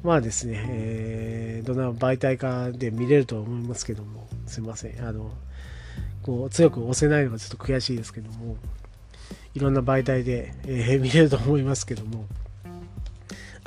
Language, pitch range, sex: Japanese, 115-160 Hz, male